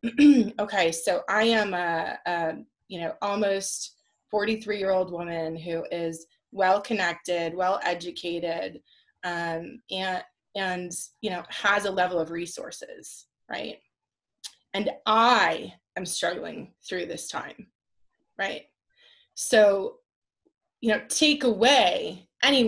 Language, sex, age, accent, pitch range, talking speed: English, female, 20-39, American, 185-245 Hz, 115 wpm